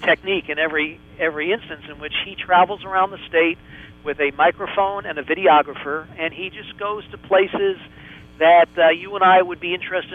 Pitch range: 150-185 Hz